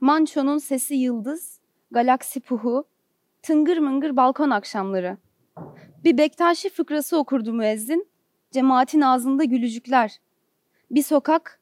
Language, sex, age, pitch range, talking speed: Turkish, female, 30-49, 245-305 Hz, 100 wpm